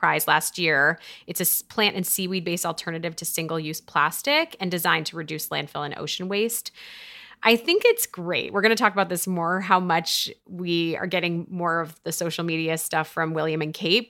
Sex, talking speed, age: female, 205 wpm, 30-49